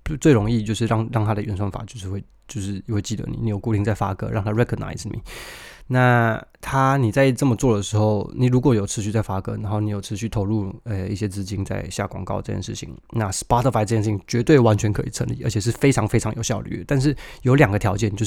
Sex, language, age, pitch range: male, Chinese, 20-39, 105-120 Hz